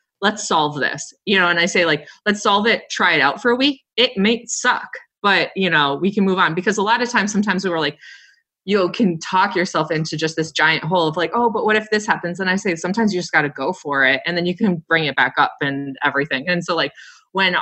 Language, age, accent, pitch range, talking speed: English, 20-39, American, 150-195 Hz, 270 wpm